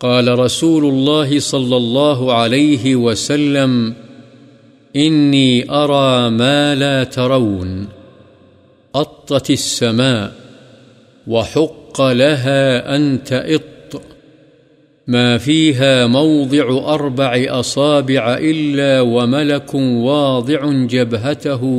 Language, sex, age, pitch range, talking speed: Urdu, male, 50-69, 120-140 Hz, 75 wpm